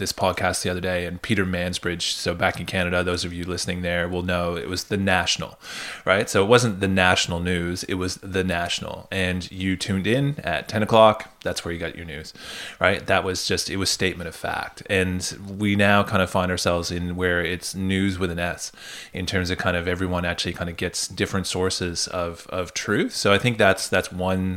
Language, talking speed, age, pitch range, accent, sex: English, 220 wpm, 20-39, 90-95 Hz, American, male